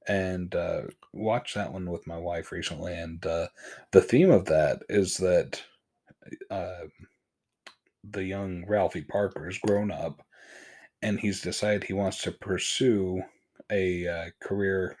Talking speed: 140 wpm